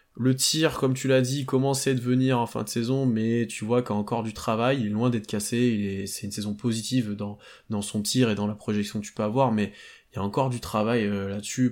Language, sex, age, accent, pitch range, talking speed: French, male, 20-39, French, 110-130 Hz, 255 wpm